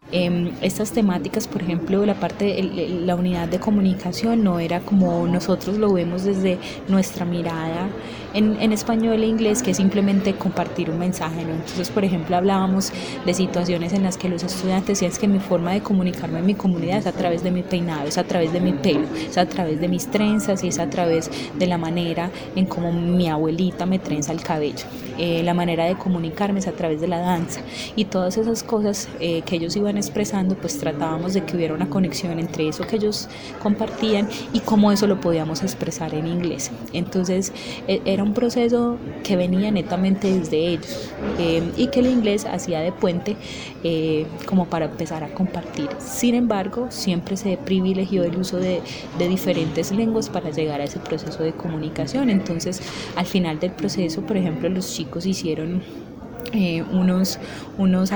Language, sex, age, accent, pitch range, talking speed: Spanish, female, 20-39, Colombian, 170-200 Hz, 185 wpm